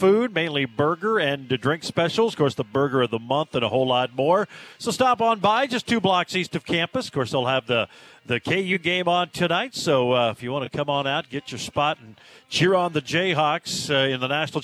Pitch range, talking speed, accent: 130-165 Hz, 240 wpm, American